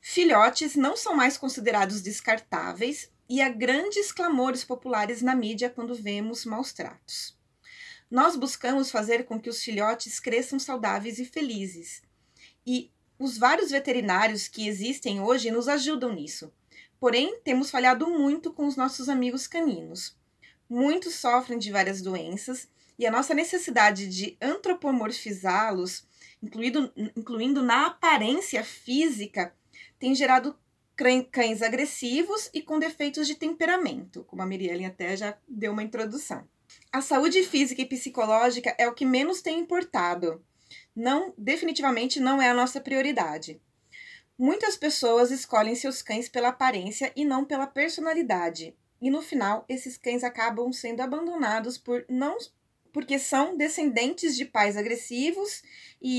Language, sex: Portuguese, female